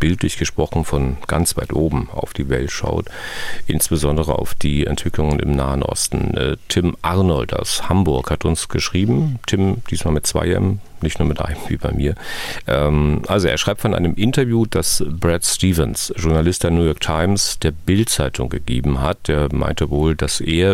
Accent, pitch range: German, 70-90 Hz